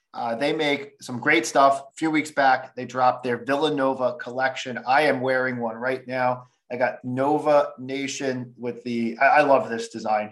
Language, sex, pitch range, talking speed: English, male, 120-145 Hz, 180 wpm